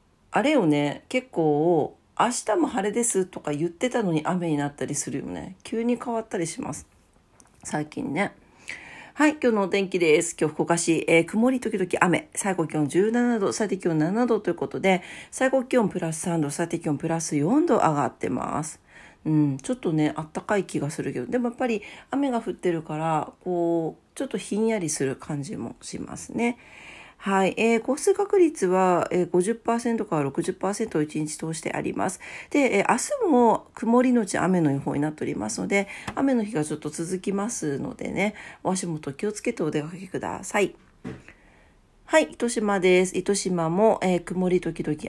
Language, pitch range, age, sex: Japanese, 155-230 Hz, 40-59, female